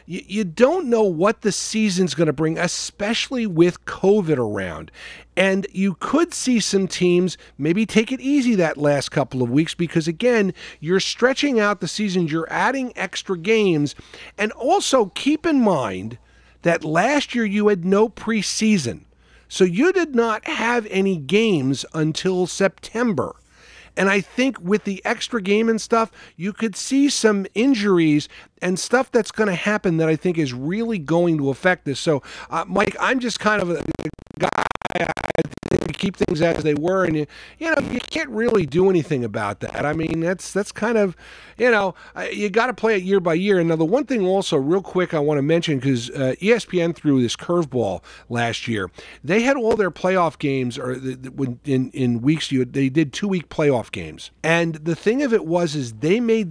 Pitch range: 150-215 Hz